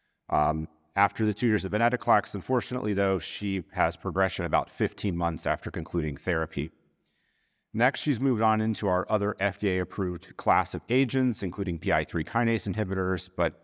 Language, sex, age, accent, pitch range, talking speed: English, male, 30-49, American, 85-110 Hz, 150 wpm